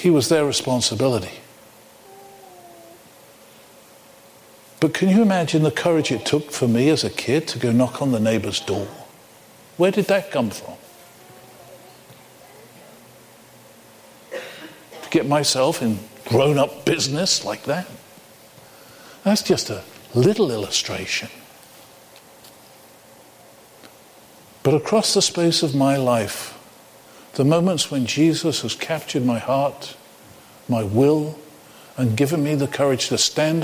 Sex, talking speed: male, 120 wpm